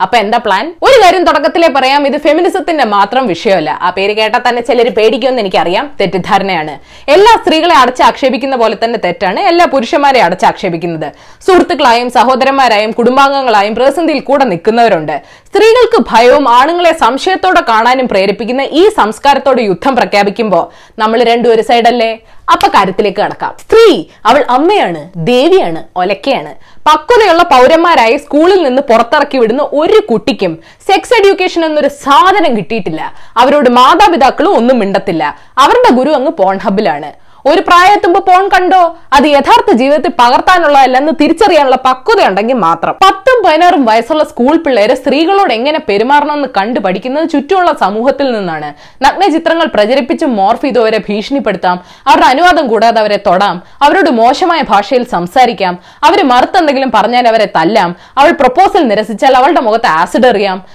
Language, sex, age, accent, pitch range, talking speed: Malayalam, female, 20-39, native, 225-340 Hz, 125 wpm